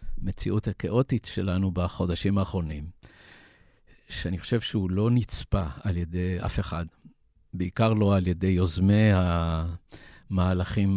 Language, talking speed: Hebrew, 110 wpm